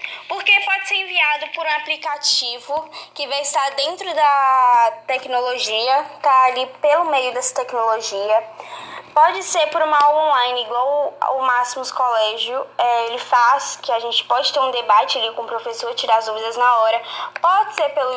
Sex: female